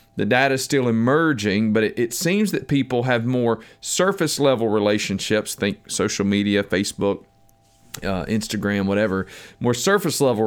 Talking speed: 140 wpm